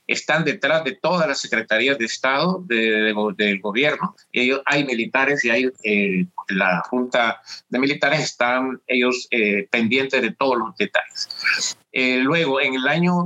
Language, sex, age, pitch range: Spanish, male, 50-69, 125-160 Hz